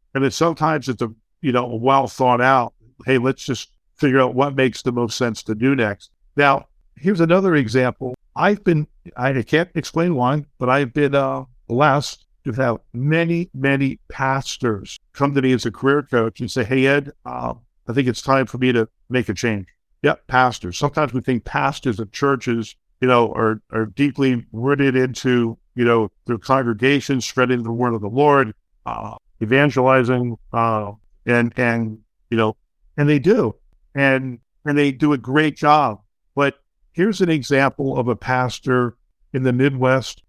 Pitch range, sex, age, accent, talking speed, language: 120-145 Hz, male, 60-79, American, 175 wpm, English